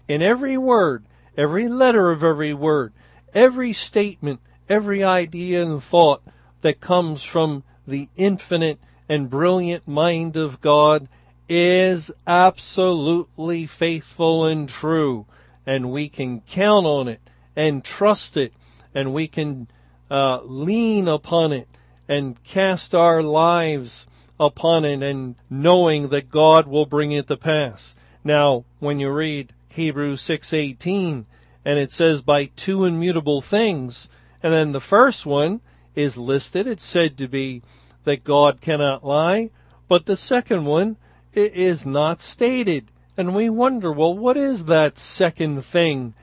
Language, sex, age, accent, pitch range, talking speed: English, male, 50-69, American, 135-175 Hz, 140 wpm